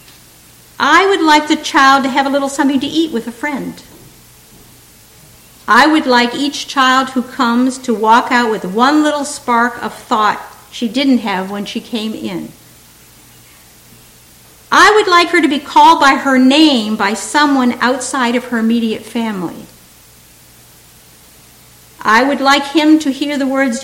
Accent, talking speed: American, 160 wpm